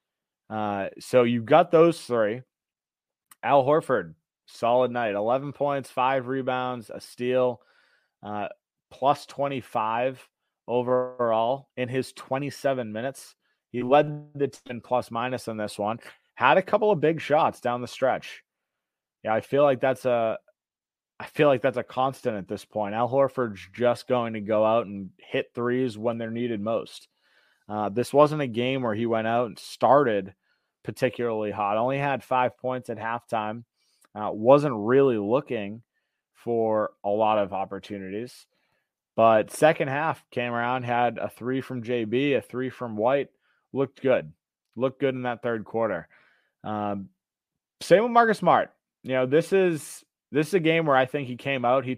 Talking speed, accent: 165 wpm, American